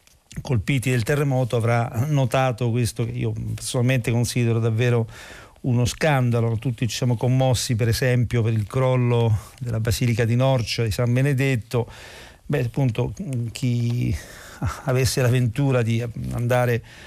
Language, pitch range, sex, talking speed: Italian, 115-135 Hz, male, 130 wpm